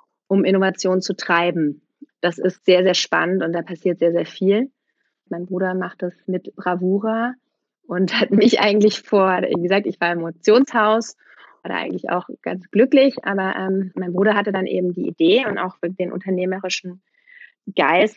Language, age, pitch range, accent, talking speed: German, 30-49, 180-210 Hz, German, 165 wpm